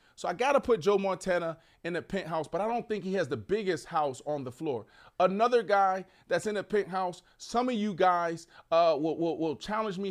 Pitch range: 150-220 Hz